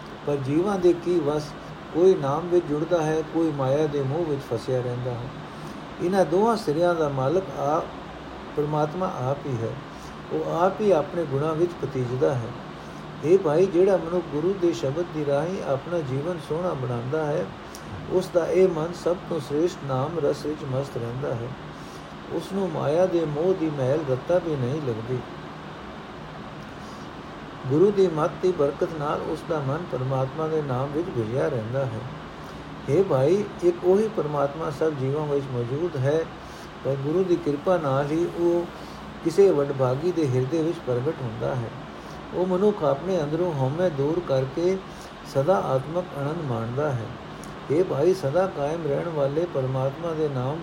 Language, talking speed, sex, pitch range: Punjabi, 150 wpm, male, 135-175 Hz